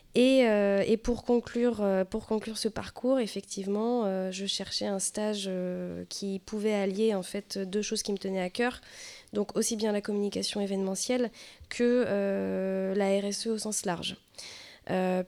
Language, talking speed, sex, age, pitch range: French, 150 wpm, female, 20-39, 190-220 Hz